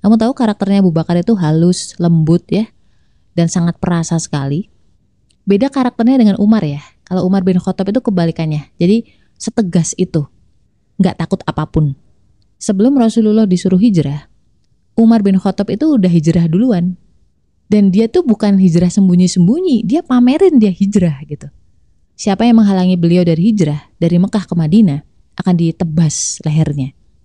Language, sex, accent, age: Indonesian, female, native, 20-39